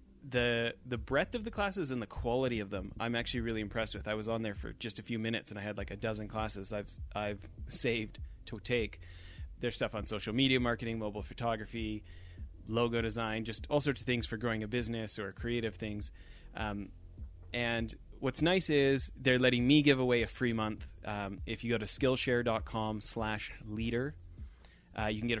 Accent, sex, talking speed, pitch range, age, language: American, male, 200 wpm, 105-120 Hz, 30-49, English